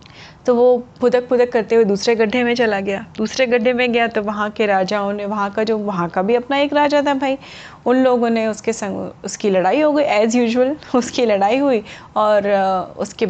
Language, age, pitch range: Hindi, 30-49, 200-245 Hz